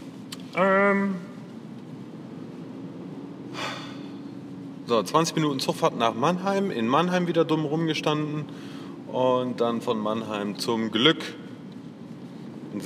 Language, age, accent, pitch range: English, 30-49, German, 125-175 Hz